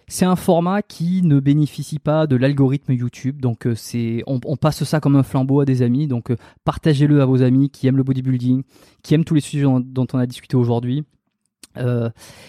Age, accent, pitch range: 20-39, French, 120-145 Hz